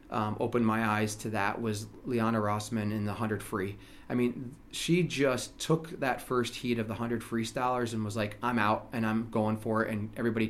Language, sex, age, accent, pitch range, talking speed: English, male, 30-49, American, 110-130 Hz, 210 wpm